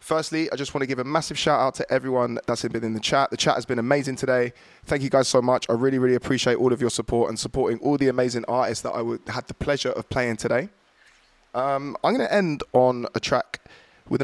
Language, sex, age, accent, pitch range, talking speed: English, male, 20-39, British, 115-140 Hz, 240 wpm